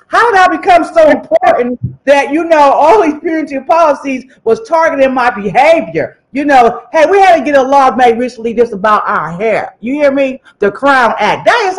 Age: 50-69